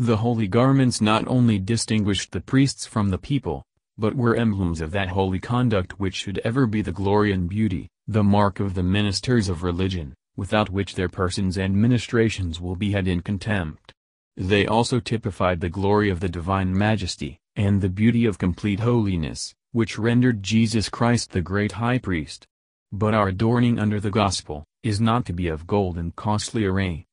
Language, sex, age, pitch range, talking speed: English, male, 40-59, 90-115 Hz, 180 wpm